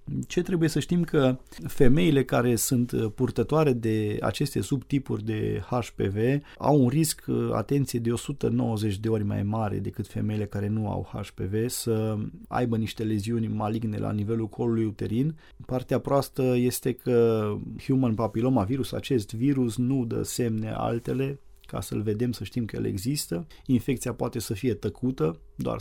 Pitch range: 110-130 Hz